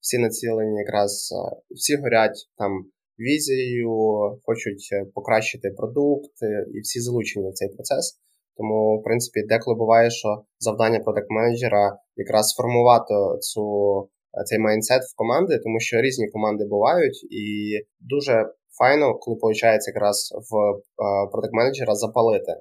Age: 20-39